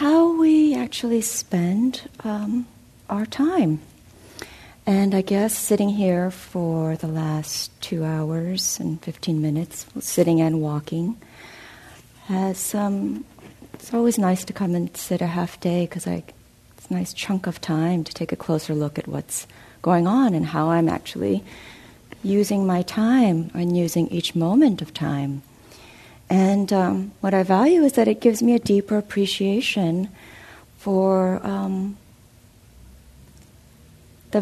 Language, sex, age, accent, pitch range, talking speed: English, female, 50-69, American, 155-200 Hz, 140 wpm